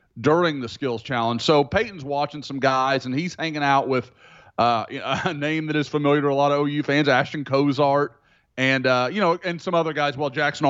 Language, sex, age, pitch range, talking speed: English, male, 30-49, 120-155 Hz, 215 wpm